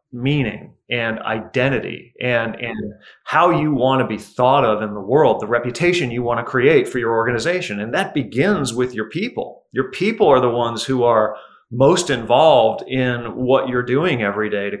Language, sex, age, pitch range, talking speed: English, male, 30-49, 115-145 Hz, 185 wpm